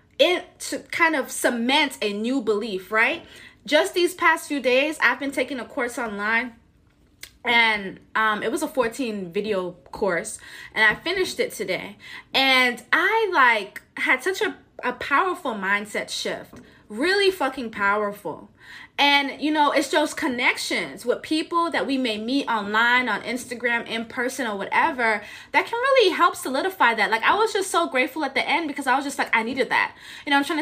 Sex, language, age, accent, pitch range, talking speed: female, English, 20-39, American, 230-335 Hz, 180 wpm